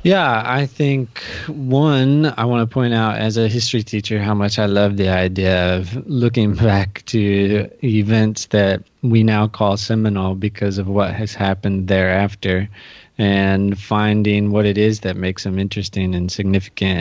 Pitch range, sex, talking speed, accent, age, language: 100-120 Hz, male, 160 wpm, American, 20-39, English